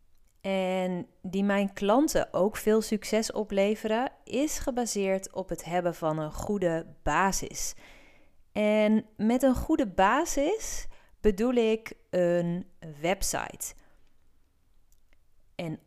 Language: Dutch